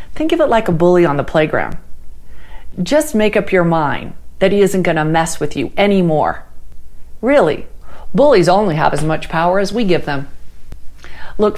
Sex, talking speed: female, 180 wpm